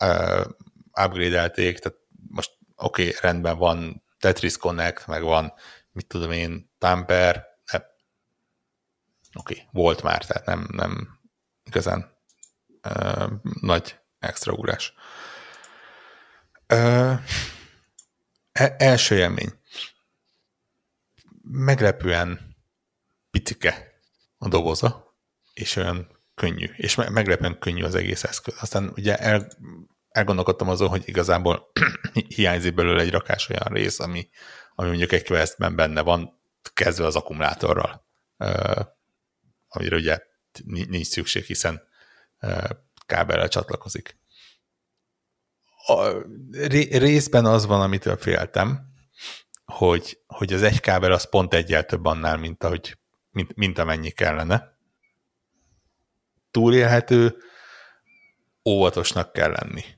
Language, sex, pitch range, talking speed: Hungarian, male, 85-110 Hz, 105 wpm